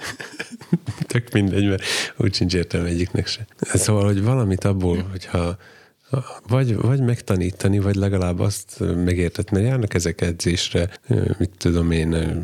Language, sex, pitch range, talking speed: Hungarian, male, 85-105 Hz, 125 wpm